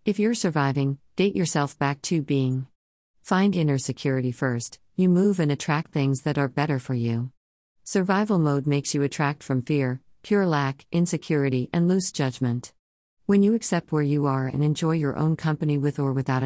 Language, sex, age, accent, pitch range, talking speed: English, female, 50-69, American, 130-165 Hz, 180 wpm